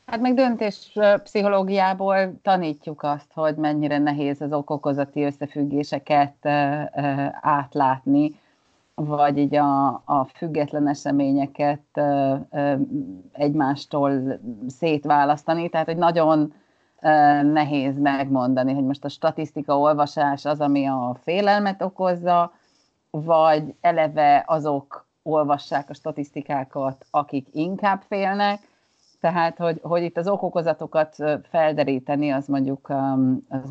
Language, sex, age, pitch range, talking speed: Hungarian, female, 30-49, 140-175 Hz, 95 wpm